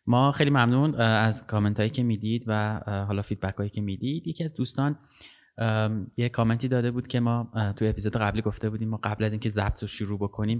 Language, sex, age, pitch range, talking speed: Persian, male, 20-39, 105-125 Hz, 200 wpm